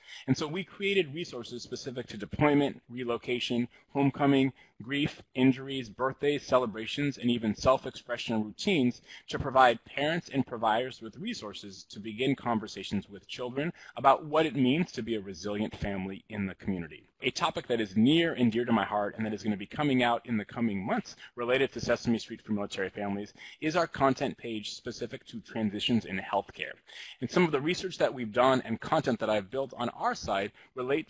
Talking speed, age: 185 wpm, 30-49